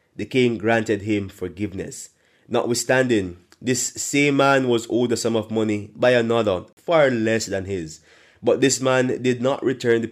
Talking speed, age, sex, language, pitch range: 165 wpm, 20-39, male, English, 100-125 Hz